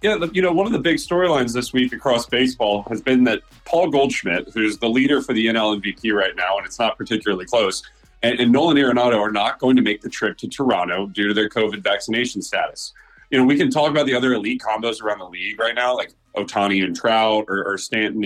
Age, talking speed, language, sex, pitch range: 30-49, 235 wpm, English, male, 105-130 Hz